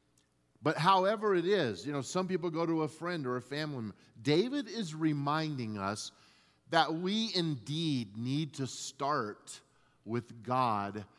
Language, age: English, 40-59